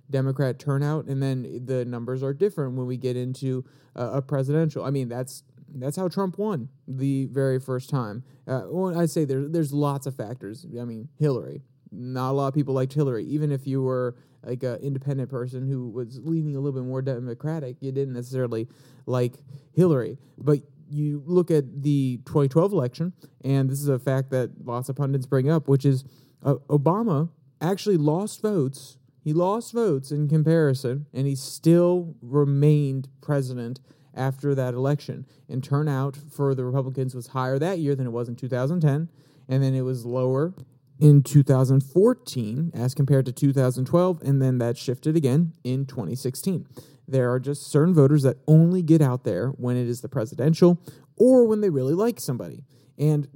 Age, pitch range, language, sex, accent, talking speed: 30-49, 130-150 Hz, English, male, American, 180 wpm